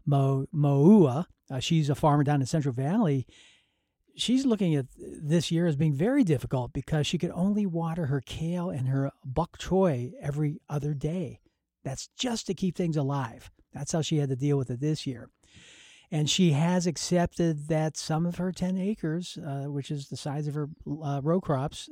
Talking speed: 190 wpm